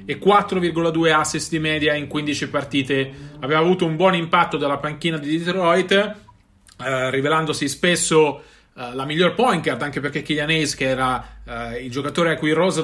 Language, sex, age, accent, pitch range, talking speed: Italian, male, 30-49, native, 145-190 Hz, 170 wpm